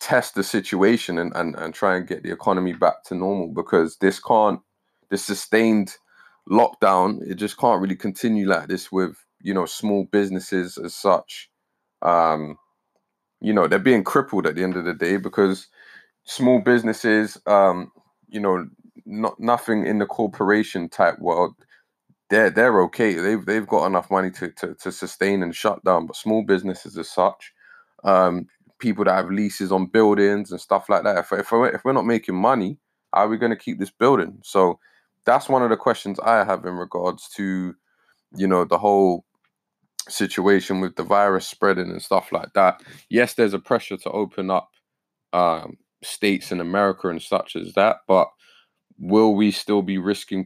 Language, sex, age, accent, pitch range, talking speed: English, male, 20-39, British, 90-105 Hz, 175 wpm